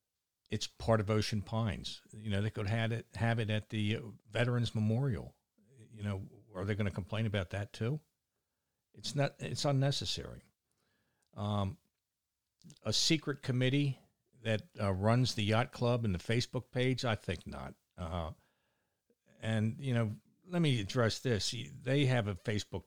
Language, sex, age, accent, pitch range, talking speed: English, male, 60-79, American, 100-125 Hz, 155 wpm